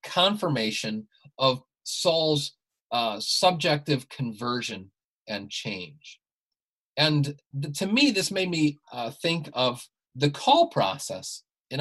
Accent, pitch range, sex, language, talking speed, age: American, 125-160 Hz, male, English, 110 wpm, 30-49